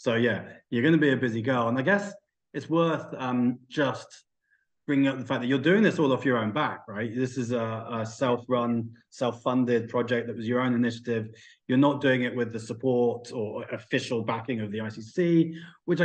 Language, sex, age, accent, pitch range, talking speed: English, male, 30-49, British, 110-135 Hz, 205 wpm